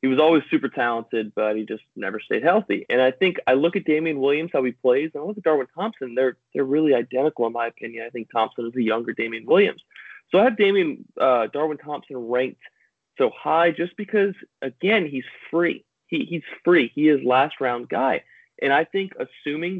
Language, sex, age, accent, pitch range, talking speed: English, male, 30-49, American, 120-155 Hz, 210 wpm